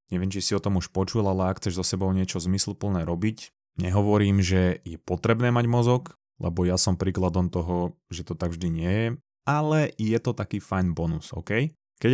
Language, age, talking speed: Slovak, 20-39, 200 wpm